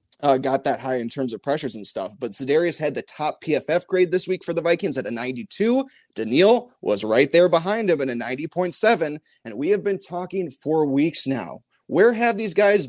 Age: 20-39